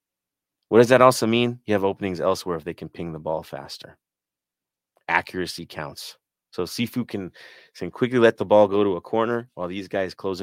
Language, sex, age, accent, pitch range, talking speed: English, male, 30-49, American, 85-110 Hz, 195 wpm